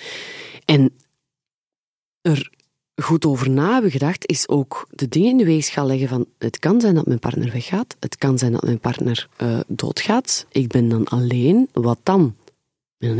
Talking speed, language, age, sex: 175 wpm, Dutch, 30-49, female